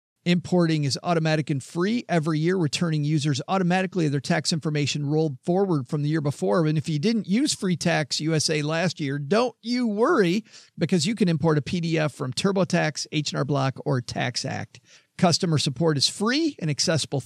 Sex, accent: male, American